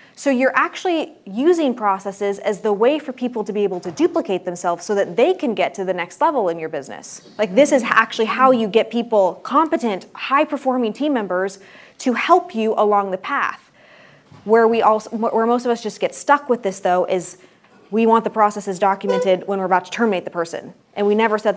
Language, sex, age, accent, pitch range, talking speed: English, female, 20-39, American, 175-225 Hz, 210 wpm